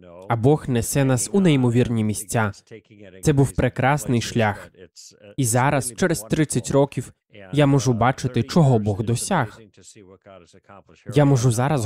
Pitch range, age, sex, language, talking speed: 115-150 Hz, 20-39, male, Russian, 125 wpm